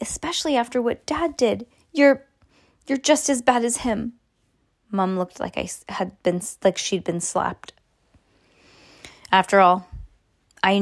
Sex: female